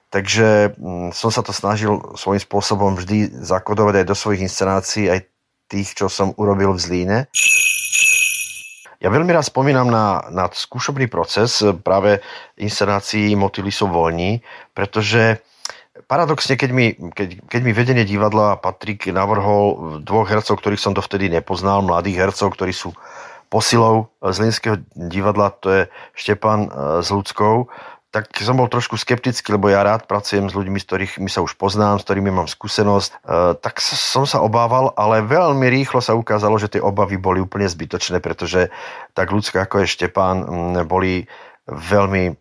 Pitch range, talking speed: 95-110 Hz, 150 wpm